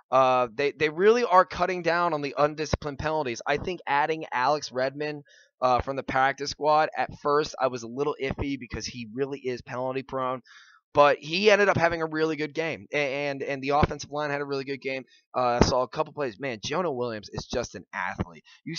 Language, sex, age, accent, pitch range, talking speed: English, male, 20-39, American, 125-150 Hz, 215 wpm